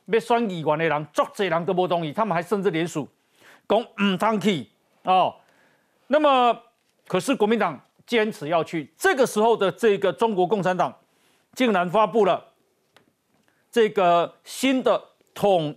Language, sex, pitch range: Chinese, male, 175-230 Hz